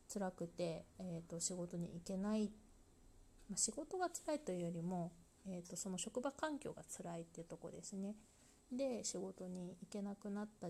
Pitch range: 170-215 Hz